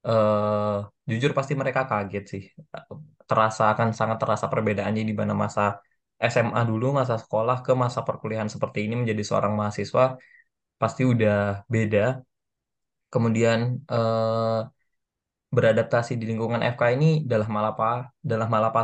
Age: 20-39